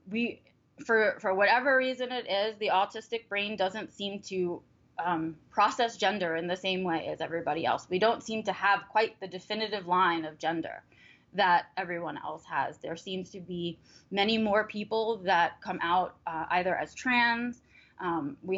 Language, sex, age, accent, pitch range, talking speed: English, female, 20-39, American, 180-220 Hz, 175 wpm